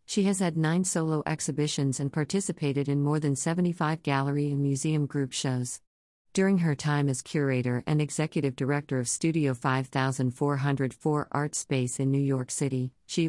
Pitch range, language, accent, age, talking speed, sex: 130-155 Hz, English, American, 50-69, 160 wpm, female